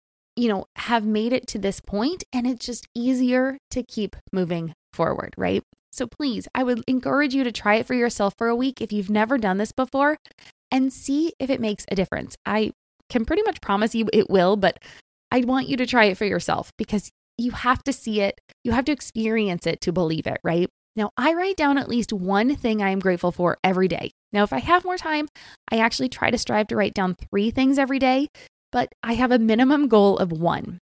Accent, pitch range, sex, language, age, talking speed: American, 210-265 Hz, female, English, 20-39, 225 wpm